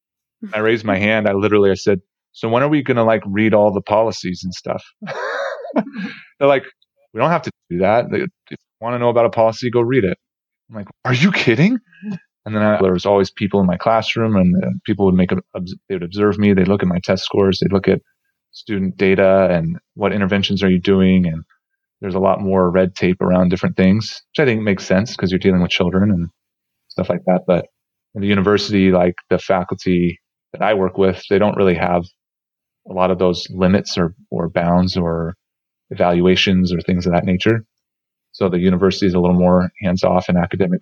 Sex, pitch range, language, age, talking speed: male, 90-110 Hz, English, 30-49, 210 wpm